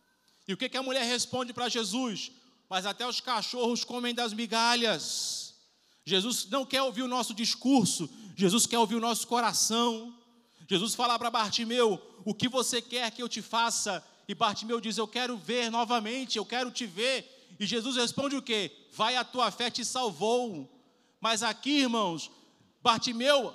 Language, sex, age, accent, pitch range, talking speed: Portuguese, male, 40-59, Brazilian, 215-255 Hz, 170 wpm